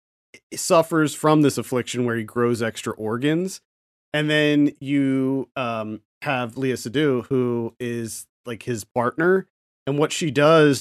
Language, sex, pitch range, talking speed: English, male, 115-155 Hz, 140 wpm